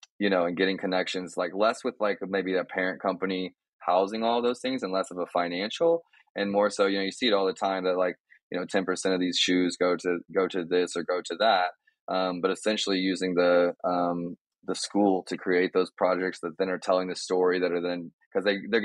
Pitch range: 90-95 Hz